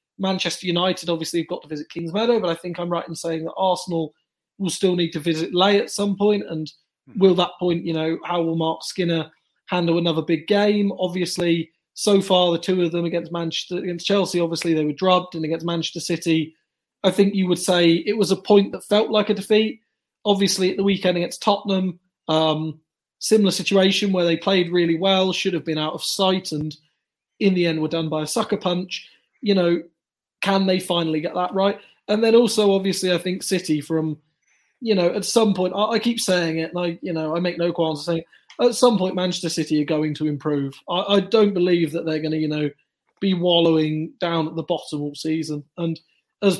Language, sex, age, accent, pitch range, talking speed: English, male, 20-39, British, 165-190 Hz, 220 wpm